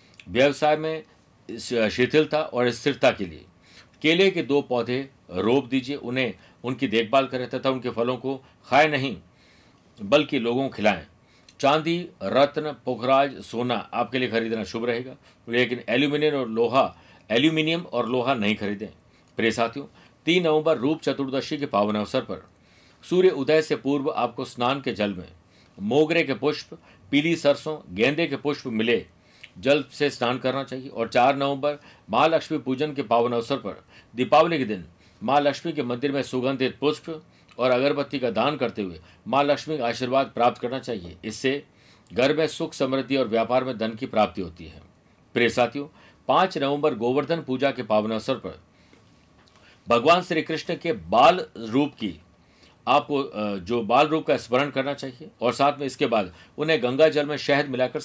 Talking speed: 160 wpm